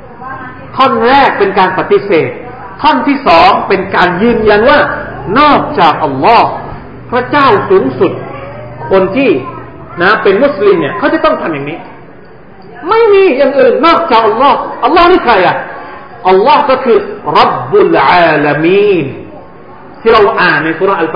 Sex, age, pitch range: male, 50-69, 225-325 Hz